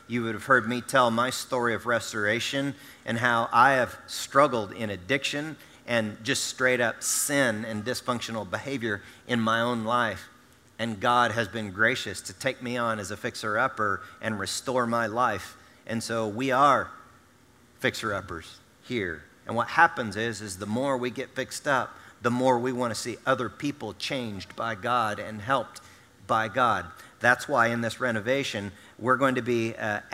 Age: 40-59